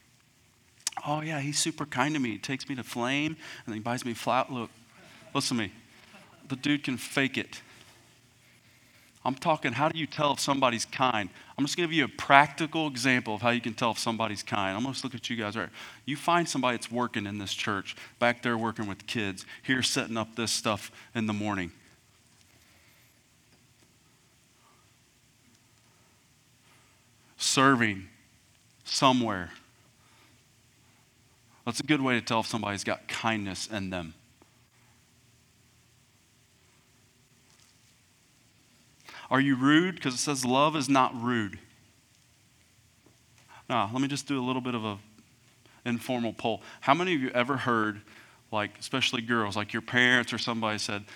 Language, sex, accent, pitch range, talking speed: English, male, American, 115-135 Hz, 155 wpm